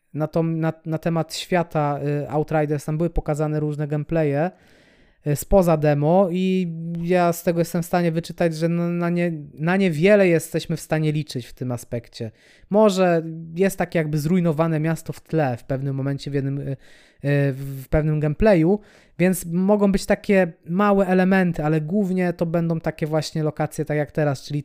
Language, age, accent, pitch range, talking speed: Polish, 20-39, native, 150-180 Hz, 155 wpm